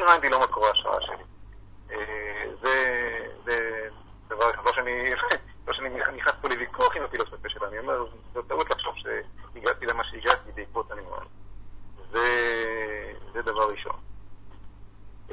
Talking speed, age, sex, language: 135 wpm, 40-59, male, Hebrew